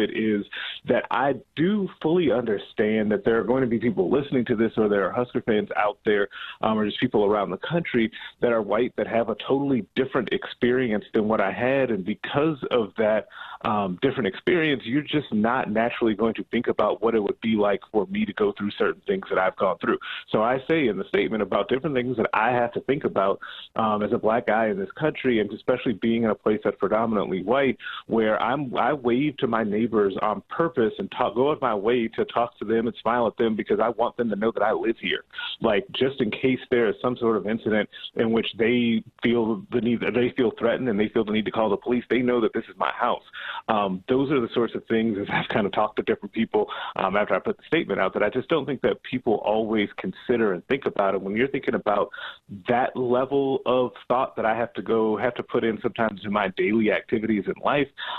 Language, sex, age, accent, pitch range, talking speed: English, male, 30-49, American, 110-125 Hz, 240 wpm